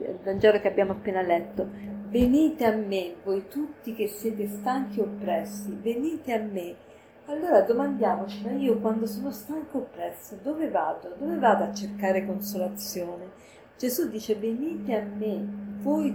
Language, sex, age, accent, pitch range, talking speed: Italian, female, 50-69, native, 200-235 Hz, 145 wpm